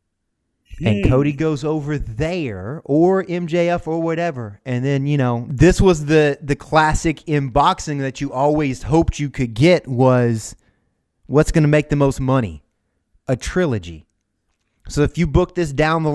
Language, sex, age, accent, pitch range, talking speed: English, male, 30-49, American, 110-145 Hz, 160 wpm